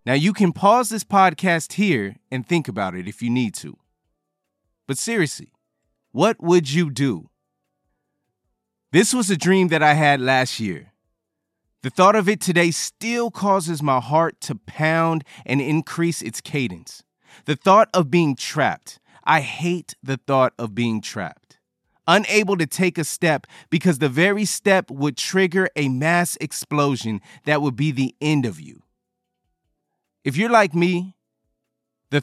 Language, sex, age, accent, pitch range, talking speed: English, male, 30-49, American, 130-180 Hz, 155 wpm